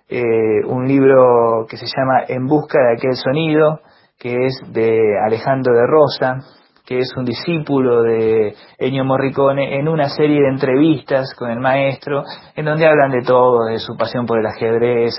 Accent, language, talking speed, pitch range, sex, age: Argentinian, Spanish, 170 wpm, 115-140 Hz, male, 30-49